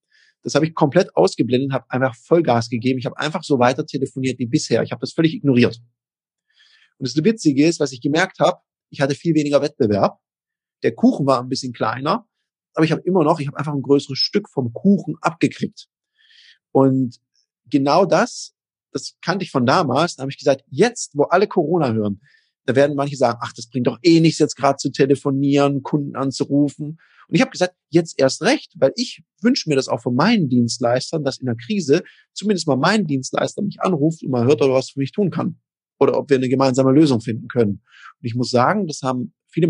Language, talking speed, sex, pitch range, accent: German, 210 wpm, male, 130-165 Hz, German